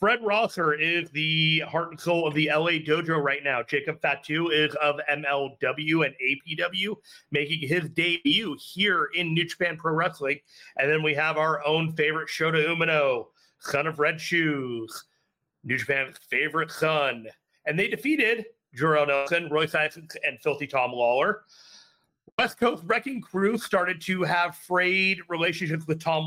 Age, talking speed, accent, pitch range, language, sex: 30-49, 155 wpm, American, 150-190 Hz, English, male